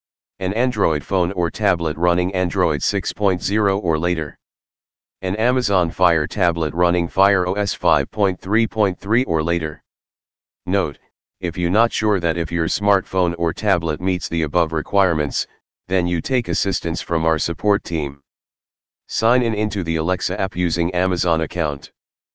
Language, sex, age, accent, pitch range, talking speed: English, male, 40-59, American, 80-95 Hz, 140 wpm